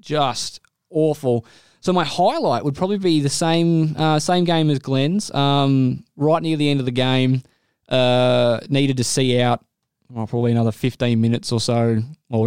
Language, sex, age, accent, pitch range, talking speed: English, male, 20-39, Australian, 115-140 Hz, 175 wpm